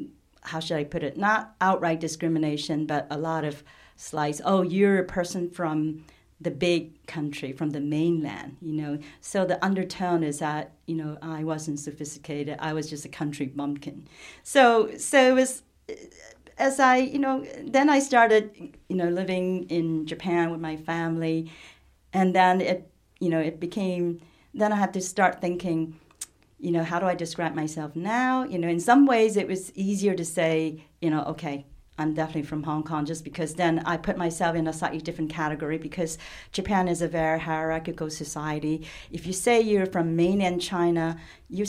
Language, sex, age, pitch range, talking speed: English, female, 40-59, 155-190 Hz, 180 wpm